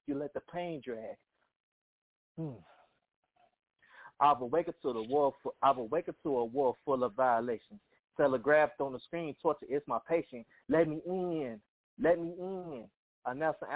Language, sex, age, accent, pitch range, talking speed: English, male, 20-39, American, 135-165 Hz, 155 wpm